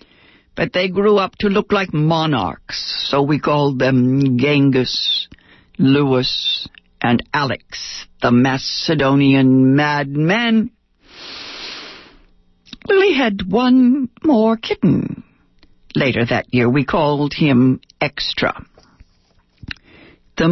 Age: 60-79